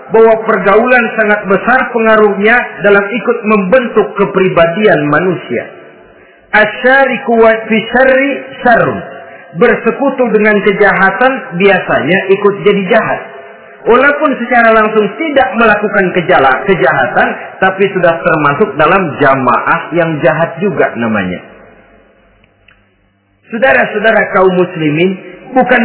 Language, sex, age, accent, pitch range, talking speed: Indonesian, male, 40-59, native, 170-230 Hz, 85 wpm